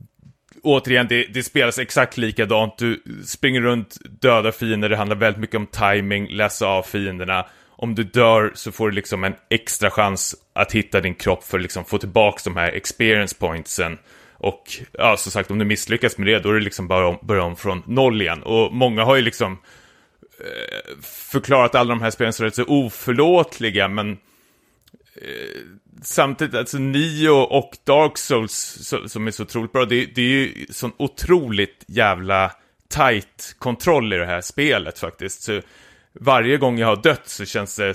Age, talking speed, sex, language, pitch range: 30-49, 180 wpm, male, Swedish, 100-125 Hz